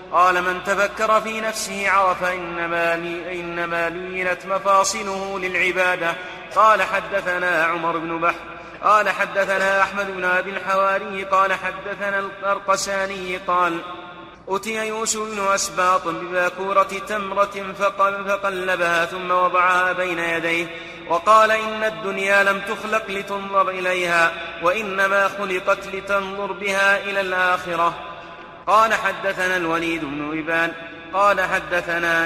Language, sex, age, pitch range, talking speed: Arabic, male, 30-49, 175-195 Hz, 105 wpm